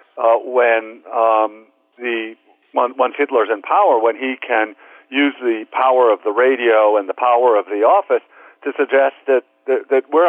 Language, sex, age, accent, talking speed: English, male, 50-69, American, 175 wpm